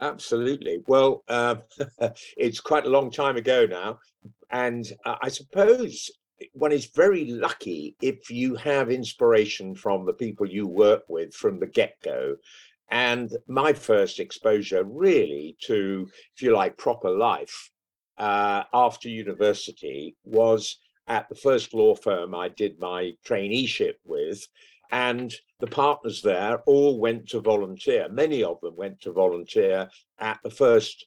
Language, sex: English, male